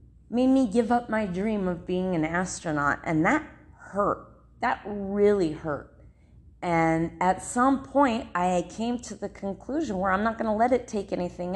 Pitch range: 185-240 Hz